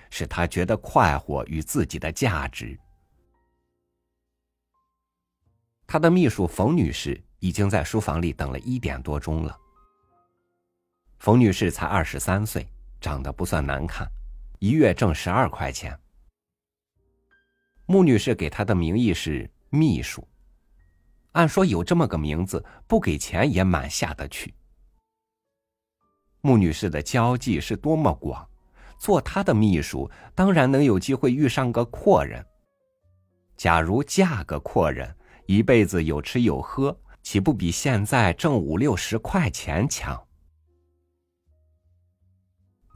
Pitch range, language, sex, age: 80-115 Hz, Chinese, male, 50-69